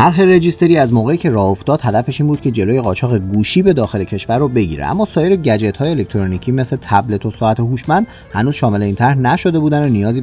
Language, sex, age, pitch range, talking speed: Persian, male, 30-49, 100-130 Hz, 210 wpm